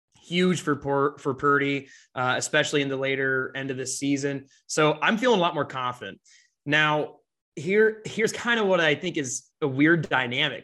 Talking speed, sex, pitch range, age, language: 185 wpm, male, 135-160 Hz, 20-39, English